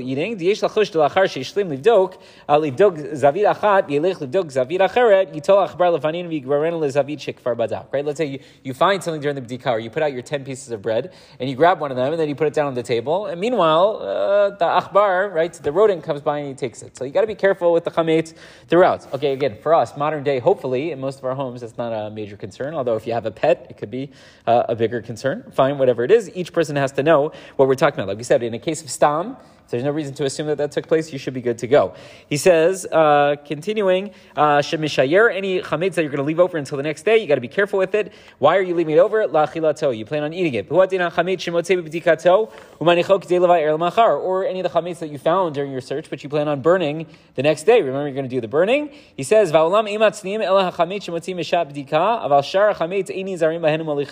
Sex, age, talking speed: male, 30-49, 205 wpm